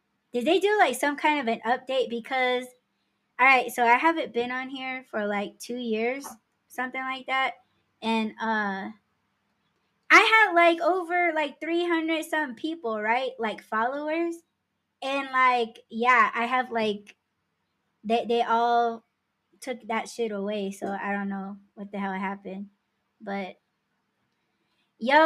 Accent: American